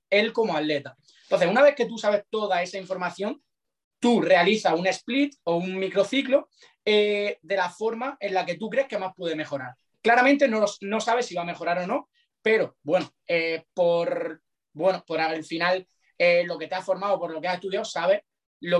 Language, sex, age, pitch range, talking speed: Spanish, male, 30-49, 175-225 Hz, 200 wpm